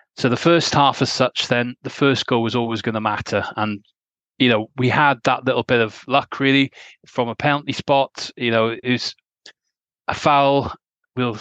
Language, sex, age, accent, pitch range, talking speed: English, male, 30-49, British, 115-135 Hz, 195 wpm